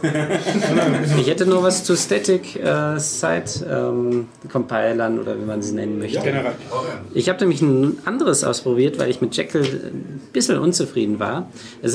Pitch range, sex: 125-160 Hz, male